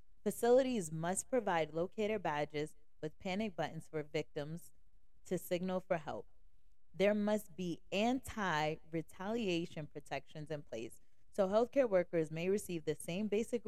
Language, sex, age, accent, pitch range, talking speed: English, female, 20-39, American, 155-190 Hz, 125 wpm